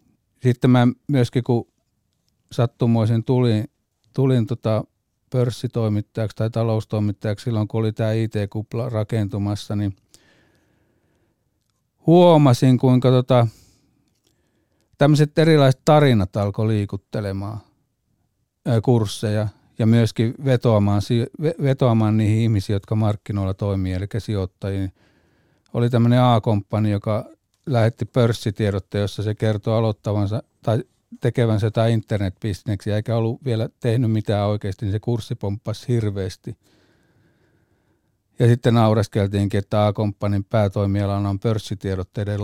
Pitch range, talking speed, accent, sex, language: 100-120 Hz, 100 wpm, native, male, Finnish